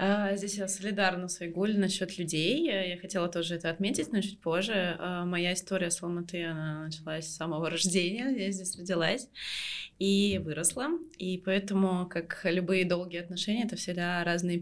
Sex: female